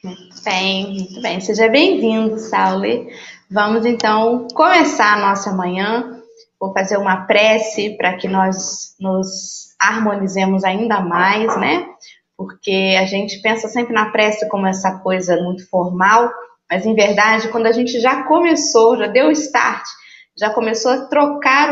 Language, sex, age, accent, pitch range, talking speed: Portuguese, female, 20-39, Brazilian, 190-230 Hz, 145 wpm